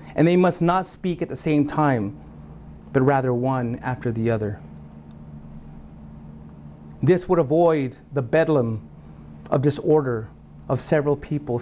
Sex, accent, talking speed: male, American, 130 wpm